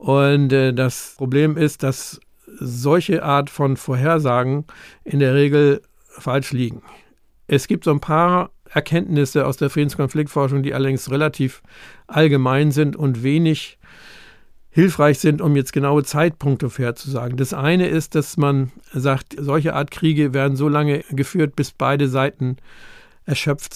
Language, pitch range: German, 140-160 Hz